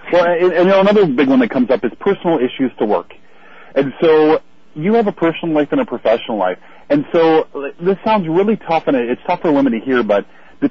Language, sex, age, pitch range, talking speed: English, male, 40-59, 135-195 Hz, 225 wpm